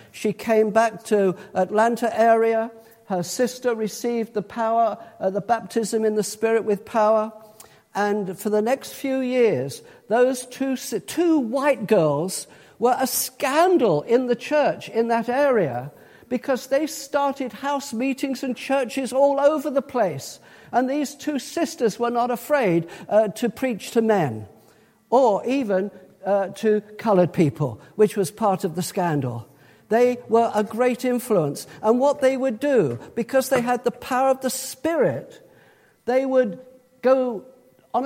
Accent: British